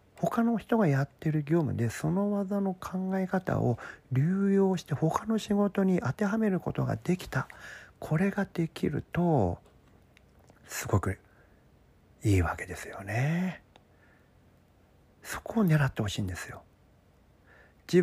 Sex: male